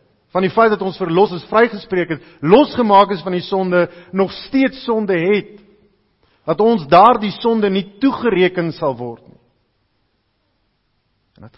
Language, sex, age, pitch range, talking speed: English, male, 50-69, 110-160 Hz, 145 wpm